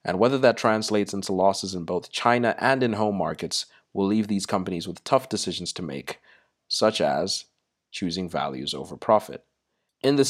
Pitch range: 90-110 Hz